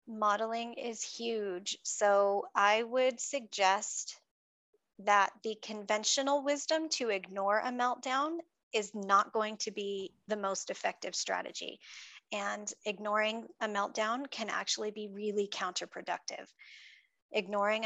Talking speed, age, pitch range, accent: 115 wpm, 30-49, 200-230 Hz, American